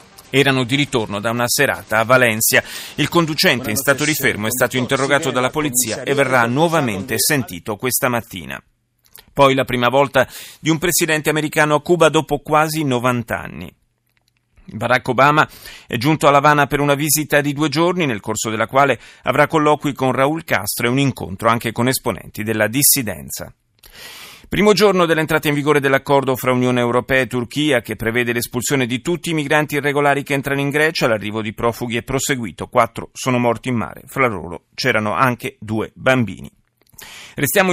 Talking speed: 170 wpm